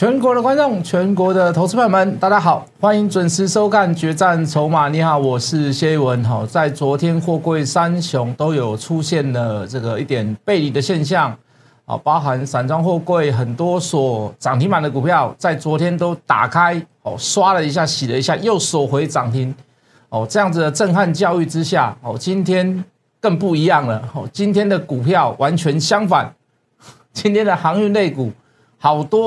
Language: Chinese